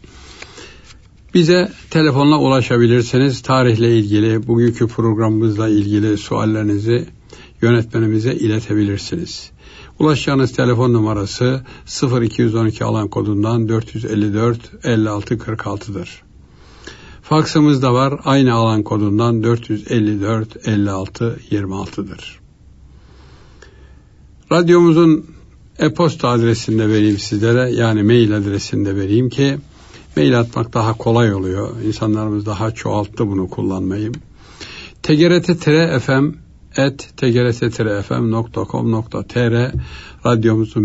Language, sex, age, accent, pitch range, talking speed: Turkish, male, 60-79, native, 105-125 Hz, 80 wpm